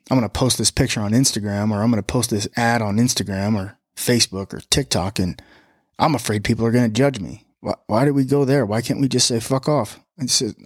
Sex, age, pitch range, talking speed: male, 20-39, 110-130 Hz, 255 wpm